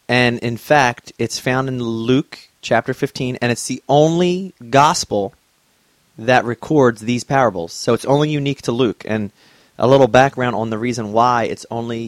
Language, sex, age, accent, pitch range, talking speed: English, male, 30-49, American, 110-130 Hz, 170 wpm